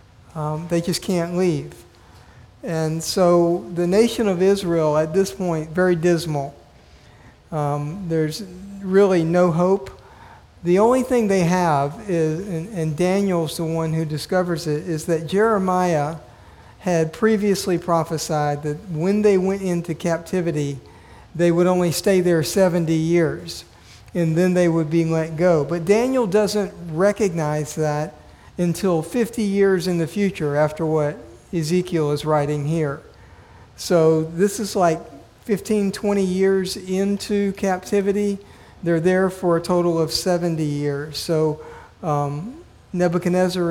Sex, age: male, 50-69